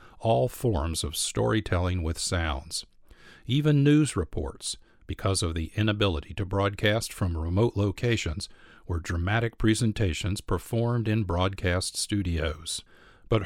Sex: male